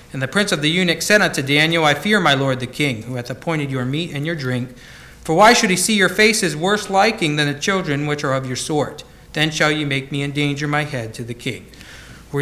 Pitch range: 135-170 Hz